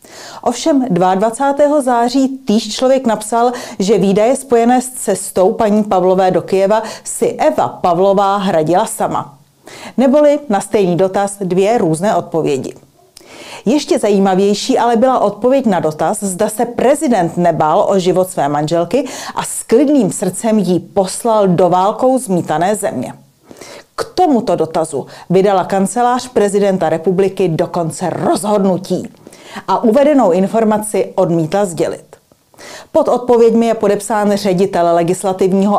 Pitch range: 180-230 Hz